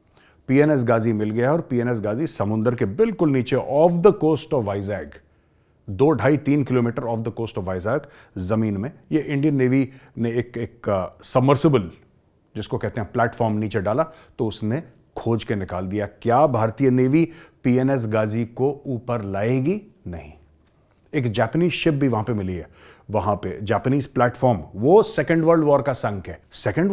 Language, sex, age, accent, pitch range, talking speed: Hindi, male, 30-49, native, 105-140 Hz, 165 wpm